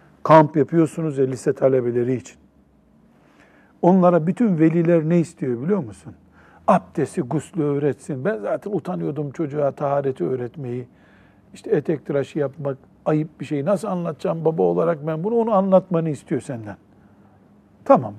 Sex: male